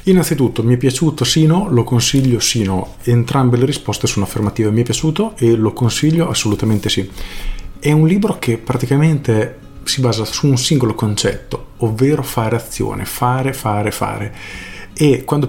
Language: Italian